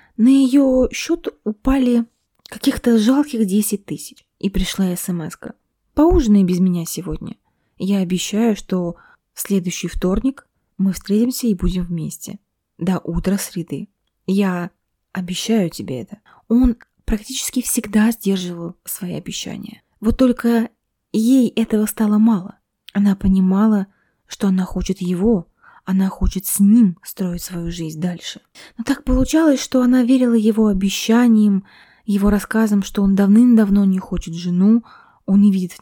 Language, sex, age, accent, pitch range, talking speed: Russian, female, 20-39, native, 190-235 Hz, 130 wpm